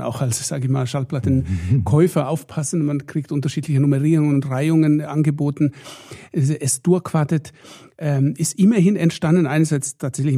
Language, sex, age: German, male, 60-79